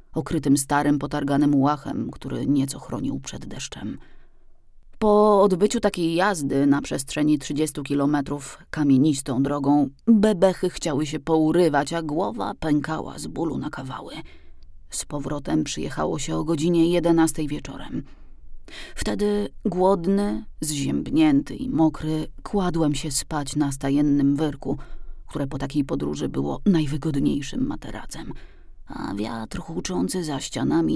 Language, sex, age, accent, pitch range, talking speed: Polish, female, 30-49, native, 110-170 Hz, 120 wpm